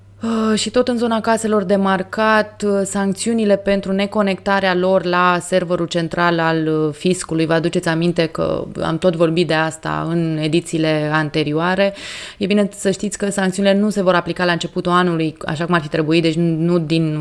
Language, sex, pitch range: Romanian, female, 160-190 Hz